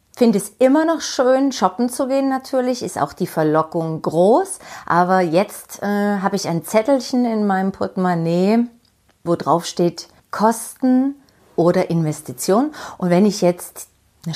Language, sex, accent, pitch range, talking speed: German, female, German, 165-215 Hz, 150 wpm